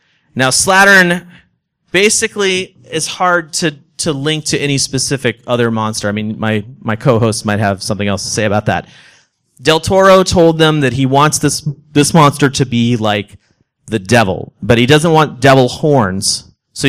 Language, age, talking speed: English, 30-49, 170 wpm